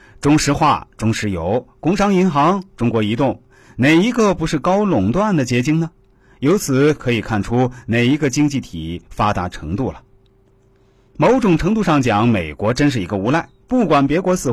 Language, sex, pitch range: Chinese, male, 110-155 Hz